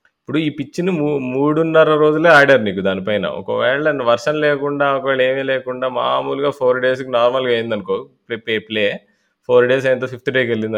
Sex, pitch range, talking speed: male, 110-145 Hz, 165 wpm